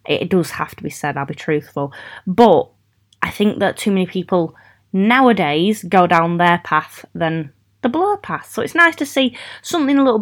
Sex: female